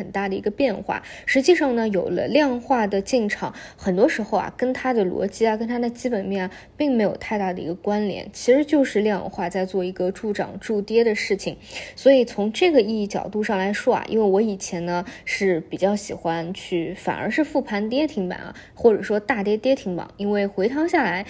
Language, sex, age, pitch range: Chinese, female, 20-39, 190-240 Hz